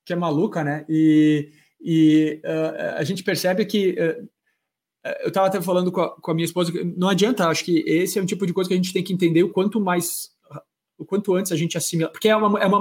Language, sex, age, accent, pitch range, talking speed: Portuguese, male, 20-39, Brazilian, 150-180 Hz, 245 wpm